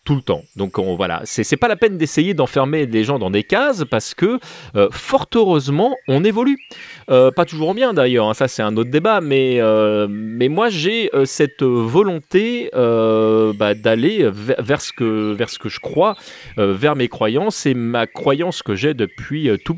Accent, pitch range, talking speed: French, 105-155 Hz, 205 wpm